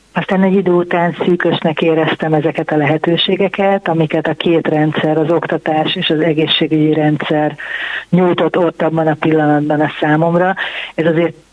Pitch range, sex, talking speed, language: 155-180 Hz, female, 145 wpm, Hungarian